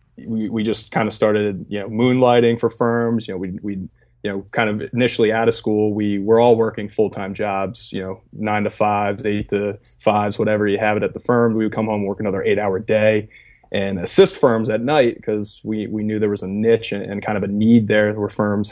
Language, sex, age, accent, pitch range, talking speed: English, male, 20-39, American, 105-115 Hz, 235 wpm